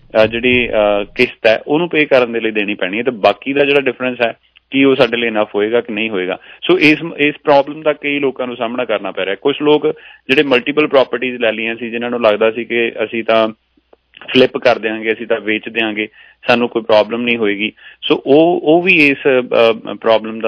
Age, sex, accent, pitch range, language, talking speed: 30-49, male, Indian, 110-125 Hz, English, 85 wpm